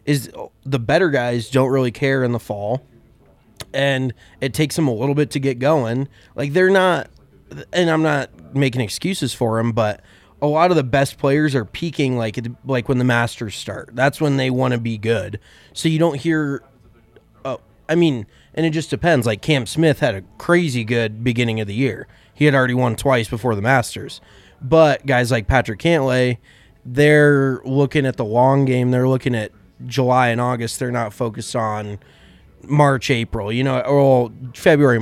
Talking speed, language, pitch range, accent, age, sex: 185 wpm, English, 115-145 Hz, American, 20-39, male